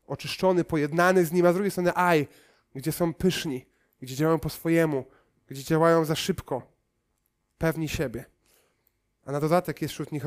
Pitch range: 130-160 Hz